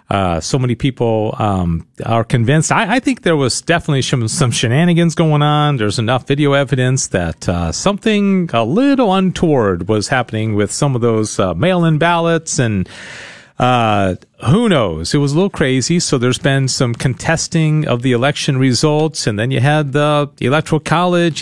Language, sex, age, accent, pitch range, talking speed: English, male, 40-59, American, 115-170 Hz, 175 wpm